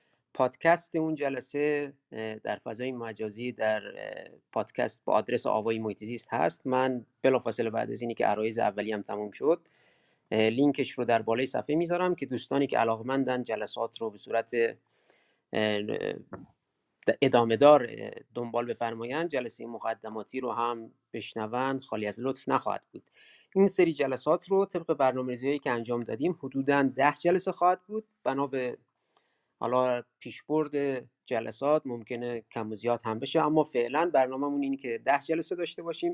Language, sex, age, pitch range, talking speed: Persian, male, 30-49, 115-150 Hz, 145 wpm